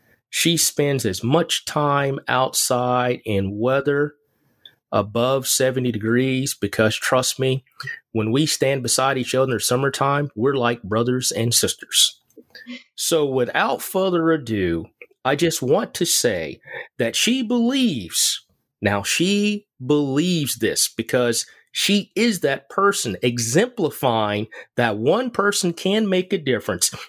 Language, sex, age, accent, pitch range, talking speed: English, male, 30-49, American, 125-175 Hz, 125 wpm